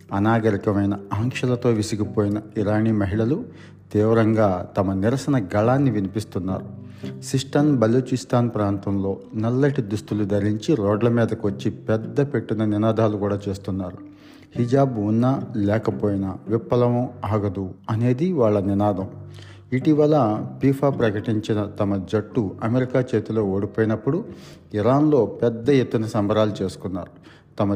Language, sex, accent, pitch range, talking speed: Telugu, male, native, 100-120 Hz, 95 wpm